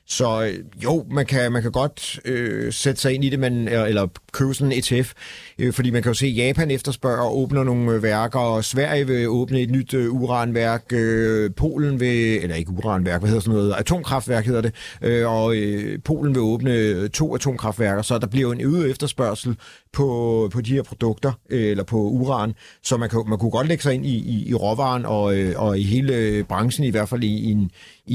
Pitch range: 110-135 Hz